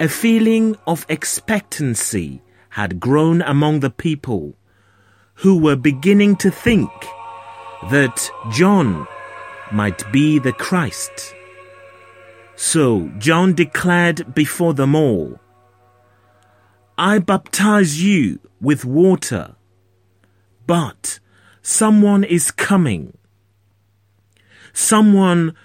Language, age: English, 30-49